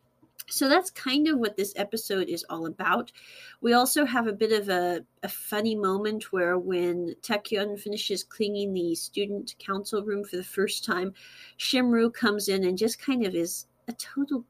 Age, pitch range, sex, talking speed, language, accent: 40-59, 200-280 Hz, female, 180 wpm, English, American